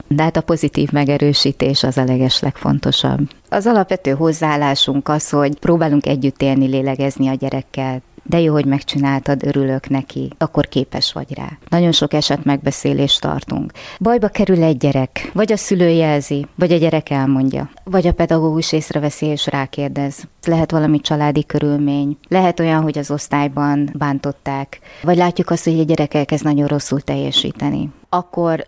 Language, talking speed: Hungarian, 155 wpm